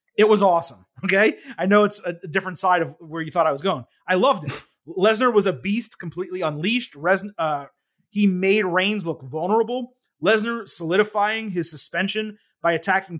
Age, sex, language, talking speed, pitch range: 30-49, male, English, 175 wpm, 160-210 Hz